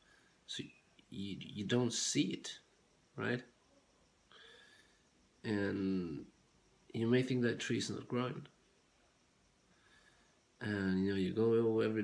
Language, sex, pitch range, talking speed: English, male, 95-115 Hz, 105 wpm